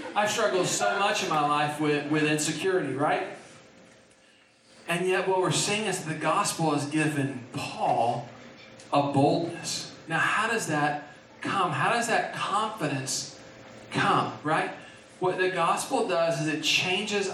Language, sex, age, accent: English, male, 40-59, American